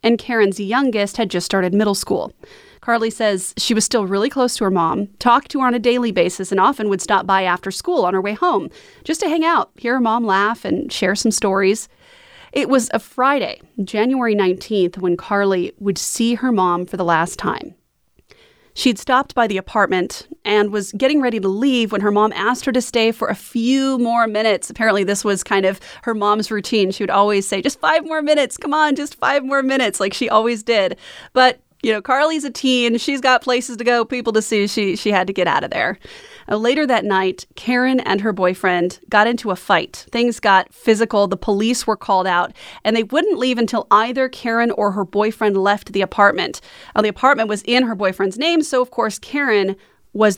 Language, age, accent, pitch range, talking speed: English, 30-49, American, 200-255 Hz, 215 wpm